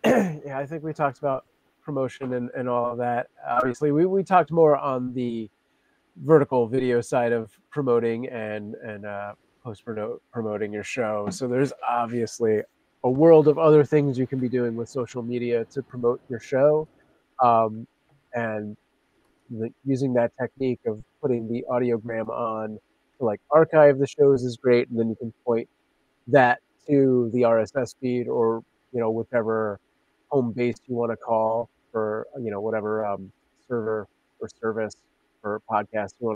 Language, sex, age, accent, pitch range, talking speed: English, male, 30-49, American, 115-145 Hz, 165 wpm